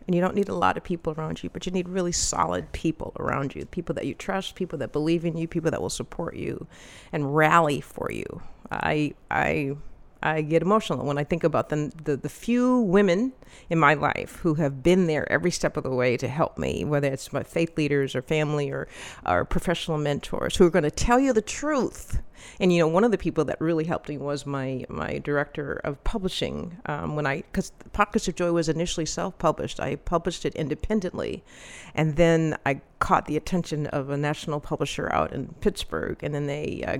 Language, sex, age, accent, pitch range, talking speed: English, female, 40-59, American, 150-185 Hz, 215 wpm